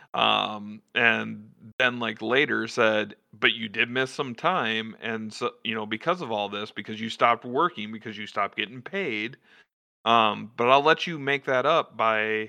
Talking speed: 185 wpm